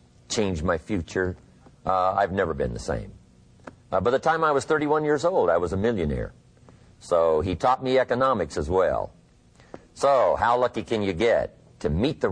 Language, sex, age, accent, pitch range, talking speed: English, male, 50-69, American, 85-120 Hz, 185 wpm